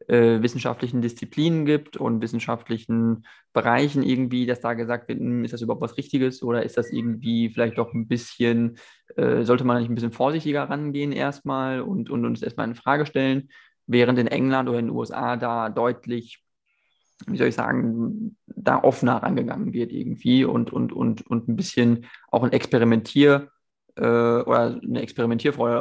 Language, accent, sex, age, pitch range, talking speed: German, German, male, 20-39, 120-135 Hz, 160 wpm